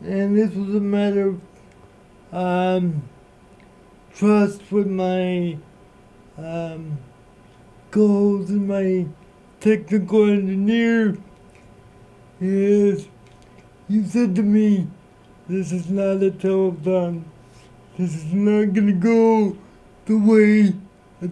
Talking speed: 100 wpm